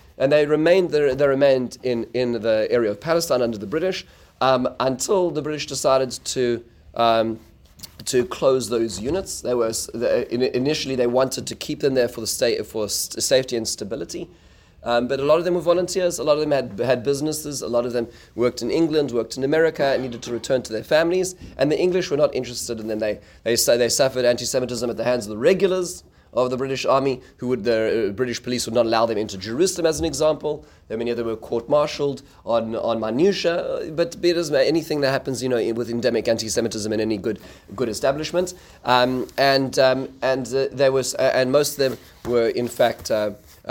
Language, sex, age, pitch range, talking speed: English, male, 30-49, 115-145 Hz, 210 wpm